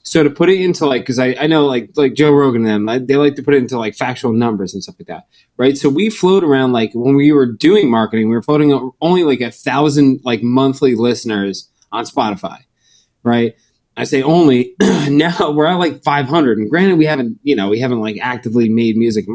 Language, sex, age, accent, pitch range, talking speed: English, male, 20-39, American, 120-170 Hz, 235 wpm